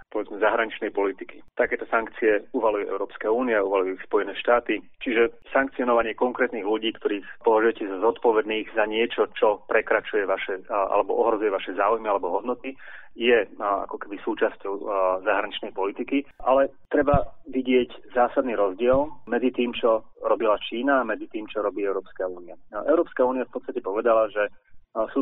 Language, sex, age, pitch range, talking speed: Slovak, male, 30-49, 110-125 Hz, 145 wpm